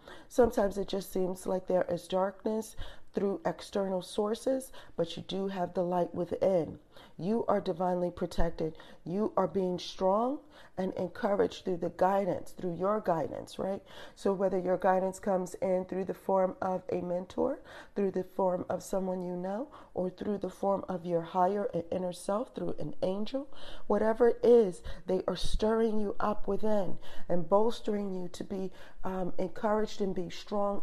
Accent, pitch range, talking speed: American, 180-215 Hz, 165 wpm